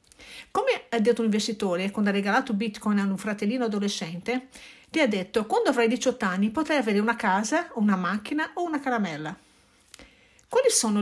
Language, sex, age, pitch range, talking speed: Italian, female, 50-69, 200-255 Hz, 170 wpm